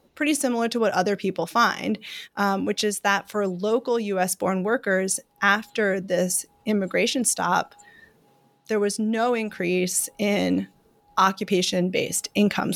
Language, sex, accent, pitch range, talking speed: English, female, American, 190-235 Hz, 120 wpm